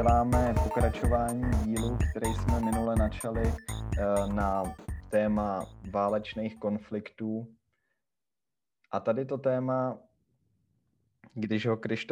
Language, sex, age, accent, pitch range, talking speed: Czech, male, 20-39, native, 100-115 Hz, 80 wpm